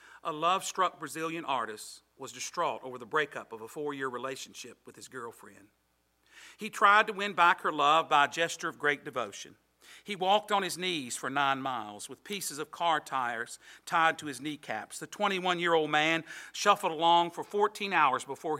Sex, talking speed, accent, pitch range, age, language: male, 175 wpm, American, 130-170 Hz, 50-69, English